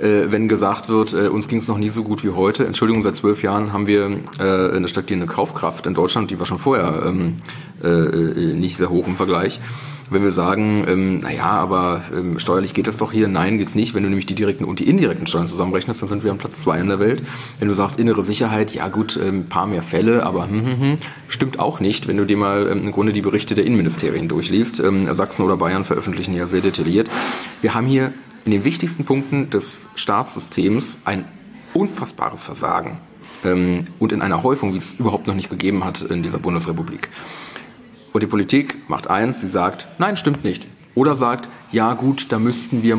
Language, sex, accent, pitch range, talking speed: German, male, German, 95-120 Hz, 215 wpm